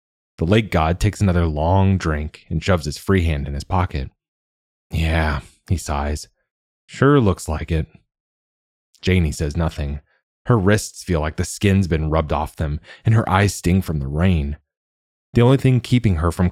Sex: male